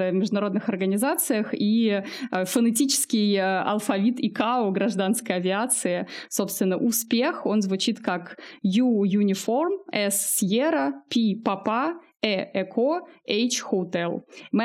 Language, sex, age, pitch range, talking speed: Russian, female, 20-39, 190-240 Hz, 80 wpm